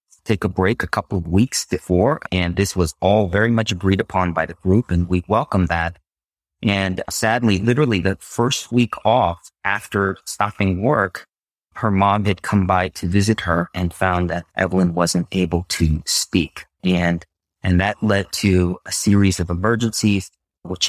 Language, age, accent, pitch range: English, 30-49, American, 85-110 Hz